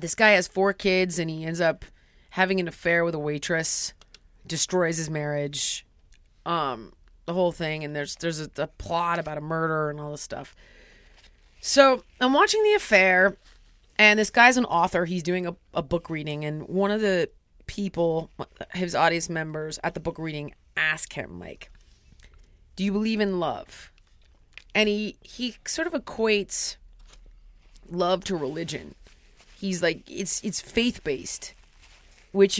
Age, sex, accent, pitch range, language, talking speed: 30-49, female, American, 165-215 Hz, English, 160 wpm